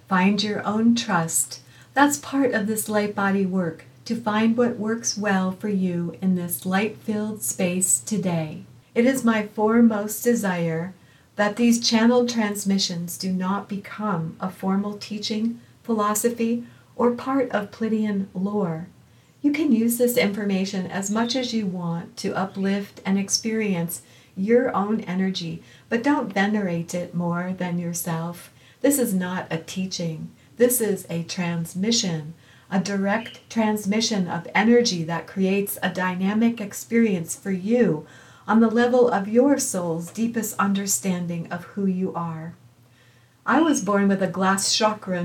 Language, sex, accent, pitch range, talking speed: English, female, American, 175-225 Hz, 145 wpm